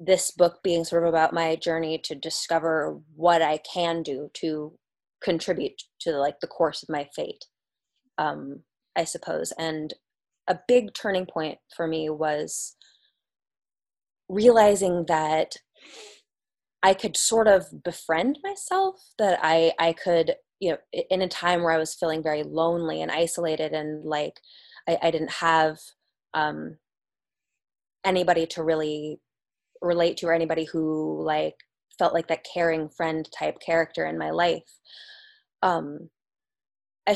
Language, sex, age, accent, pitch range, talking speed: English, female, 20-39, American, 155-195 Hz, 140 wpm